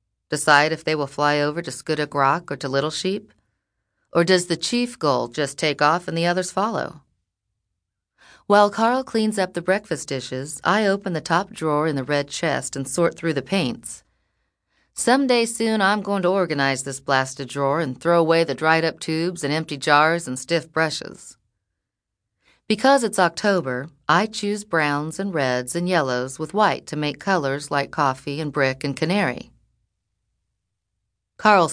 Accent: American